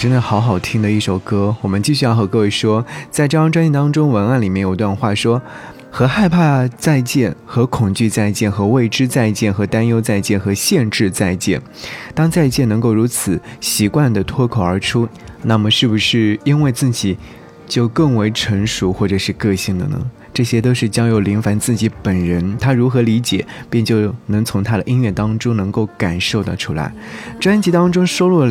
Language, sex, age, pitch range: Chinese, male, 20-39, 100-130 Hz